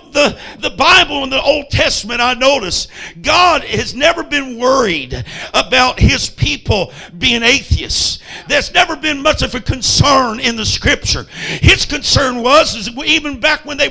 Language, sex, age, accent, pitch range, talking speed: English, male, 50-69, American, 250-295 Hz, 160 wpm